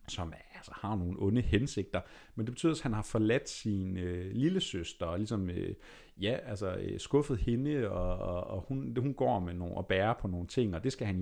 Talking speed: 225 wpm